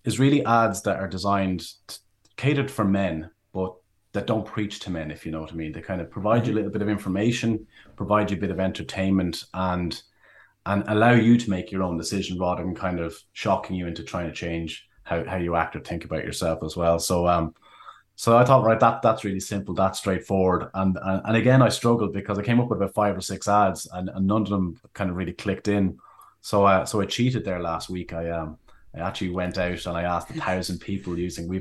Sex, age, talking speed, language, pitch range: male, 30-49, 240 wpm, English, 90-105 Hz